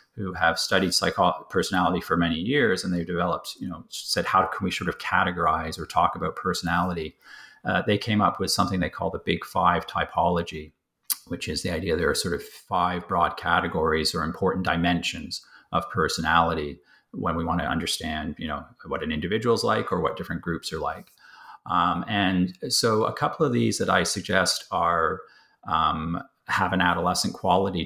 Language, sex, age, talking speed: English, male, 40-59, 185 wpm